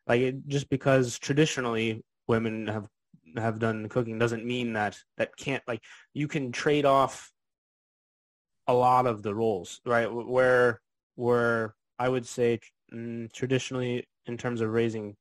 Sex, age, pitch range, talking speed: male, 20-39, 105-125 Hz, 140 wpm